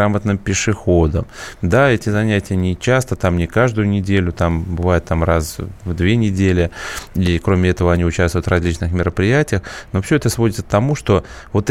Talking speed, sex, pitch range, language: 175 wpm, male, 90-110 Hz, Russian